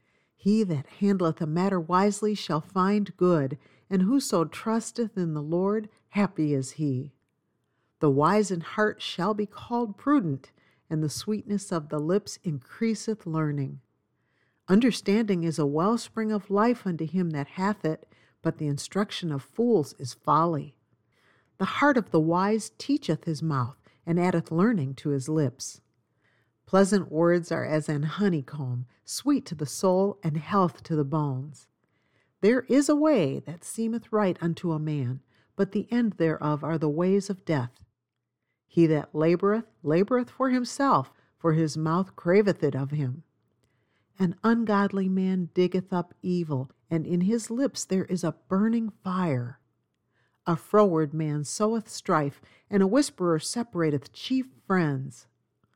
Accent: American